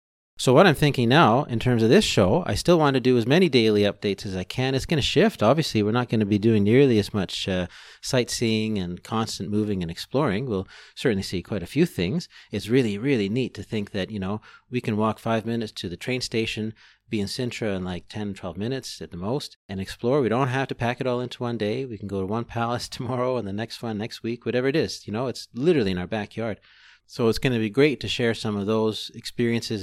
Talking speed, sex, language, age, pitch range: 255 wpm, male, English, 30-49, 100-120 Hz